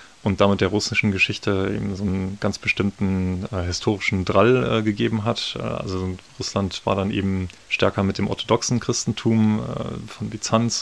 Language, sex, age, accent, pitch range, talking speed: German, male, 30-49, German, 95-110 Hz, 165 wpm